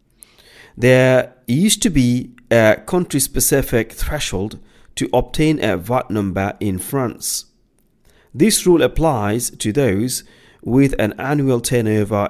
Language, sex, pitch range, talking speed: English, male, 105-140 Hz, 110 wpm